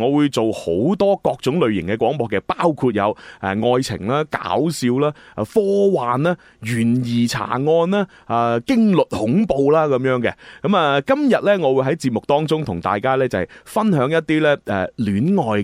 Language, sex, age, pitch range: Chinese, male, 30-49, 110-165 Hz